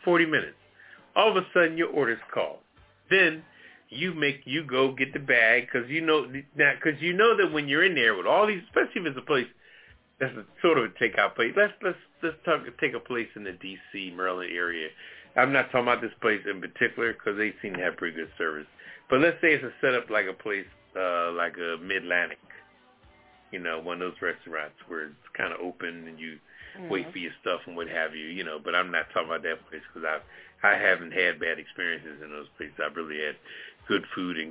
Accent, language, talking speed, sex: American, English, 230 wpm, male